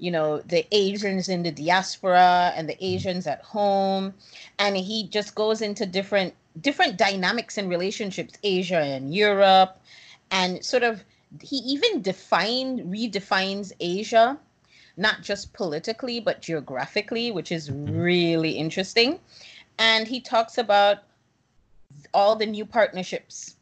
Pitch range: 170-210 Hz